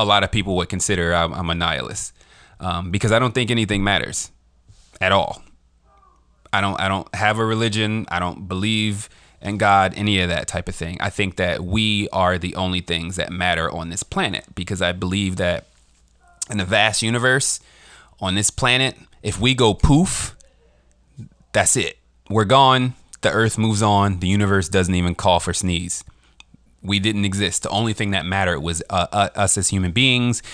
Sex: male